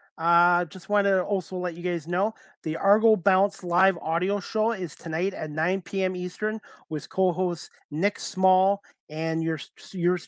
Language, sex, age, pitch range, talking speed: English, male, 30-49, 160-185 Hz, 160 wpm